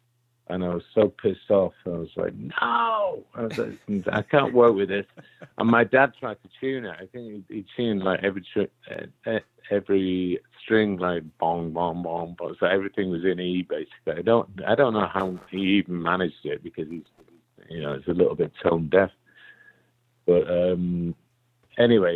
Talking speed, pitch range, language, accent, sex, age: 185 wpm, 90-115 Hz, English, British, male, 50-69